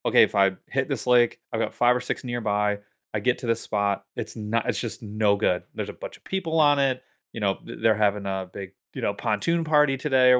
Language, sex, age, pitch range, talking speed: English, male, 20-39, 100-120 Hz, 240 wpm